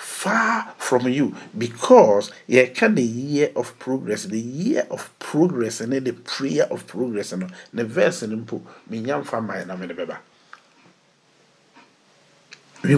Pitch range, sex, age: 100-135 Hz, male, 50-69